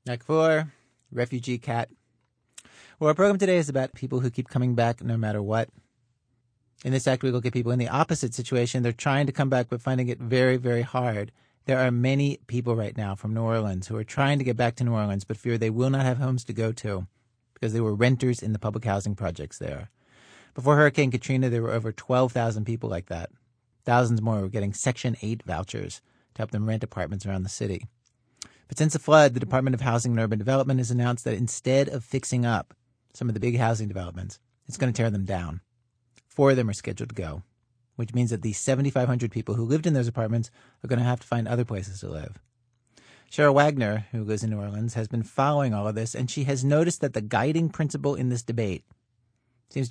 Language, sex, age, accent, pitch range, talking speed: English, male, 40-59, American, 115-130 Hz, 225 wpm